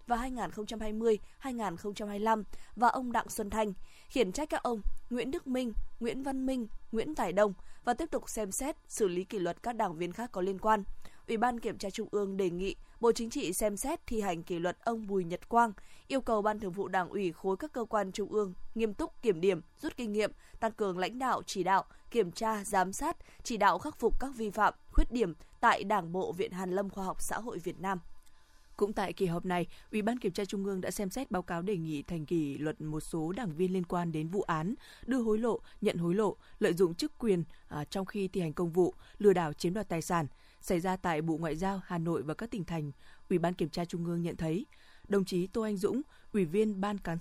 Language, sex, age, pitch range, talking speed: Vietnamese, female, 20-39, 175-225 Hz, 240 wpm